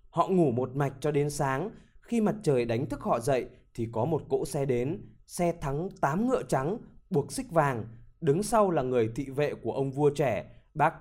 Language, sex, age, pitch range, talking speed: Vietnamese, male, 20-39, 130-180 Hz, 215 wpm